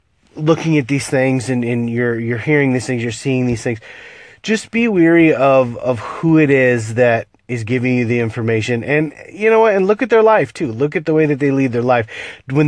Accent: American